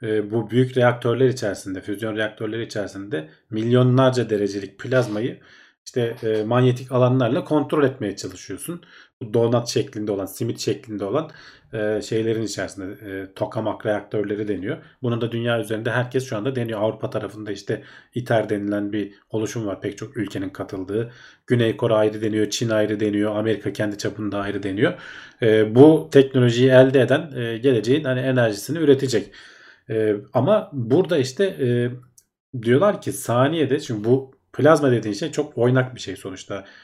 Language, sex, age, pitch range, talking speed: Turkish, male, 40-59, 105-130 Hz, 140 wpm